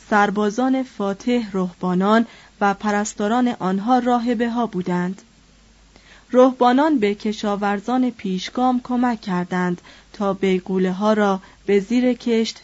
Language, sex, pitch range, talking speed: Persian, female, 195-245 Hz, 110 wpm